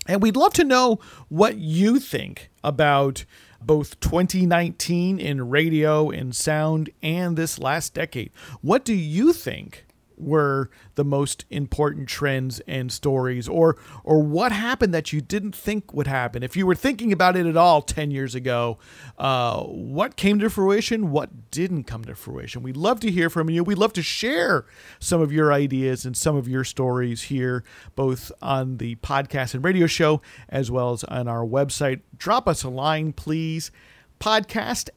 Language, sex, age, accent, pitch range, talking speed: English, male, 40-59, American, 130-190 Hz, 170 wpm